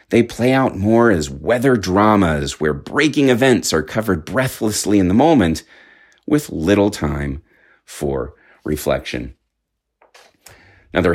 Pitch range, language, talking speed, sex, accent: 80-120 Hz, English, 120 wpm, male, American